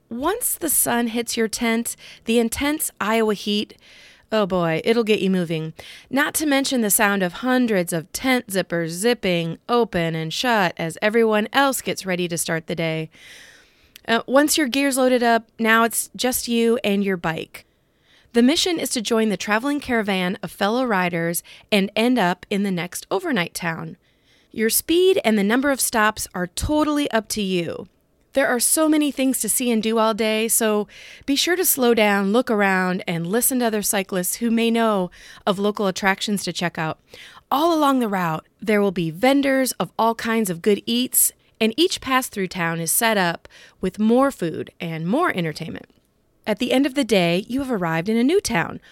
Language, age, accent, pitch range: English, 30-49, American, 185-255 Hz